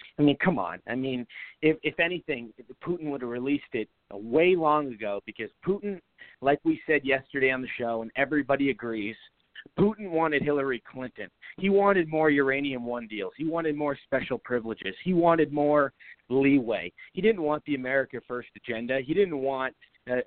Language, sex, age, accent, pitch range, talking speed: English, male, 40-59, American, 125-155 Hz, 175 wpm